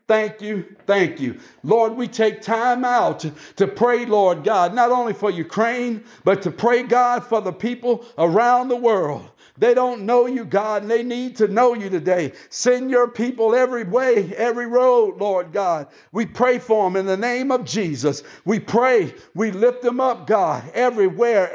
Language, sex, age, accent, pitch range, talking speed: English, male, 60-79, American, 185-240 Hz, 185 wpm